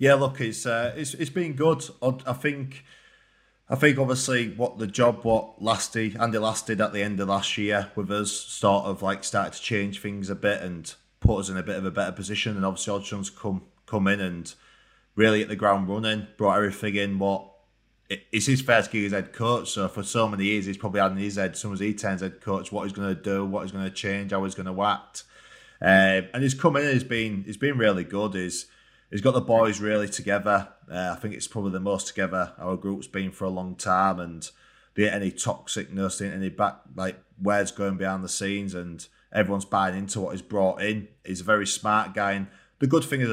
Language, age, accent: English, 20-39, British